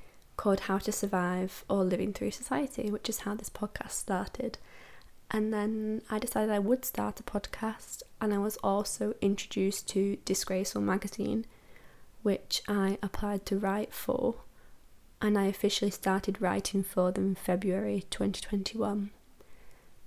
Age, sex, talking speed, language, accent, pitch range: 10-29, female, 140 wpm, English, British, 195-215 Hz